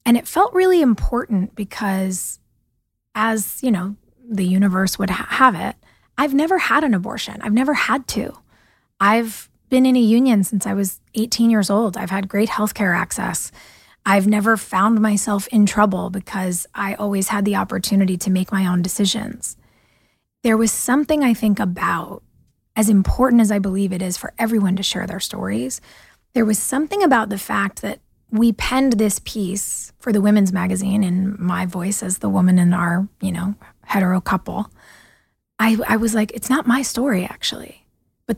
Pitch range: 195-240 Hz